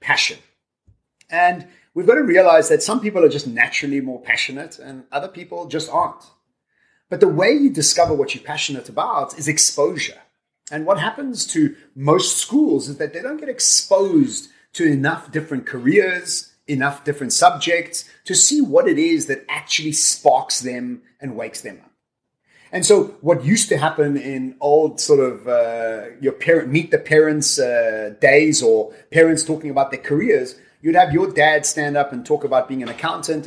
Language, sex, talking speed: English, male, 175 wpm